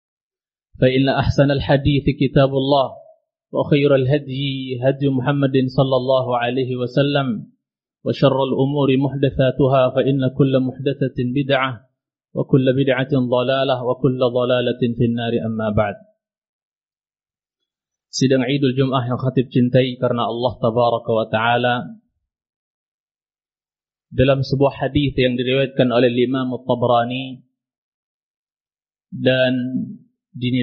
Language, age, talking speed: Indonesian, 30-49, 75 wpm